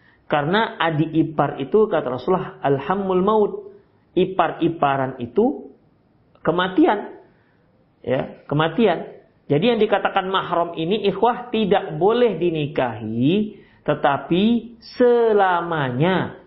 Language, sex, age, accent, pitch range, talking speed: Indonesian, male, 40-59, native, 170-230 Hz, 85 wpm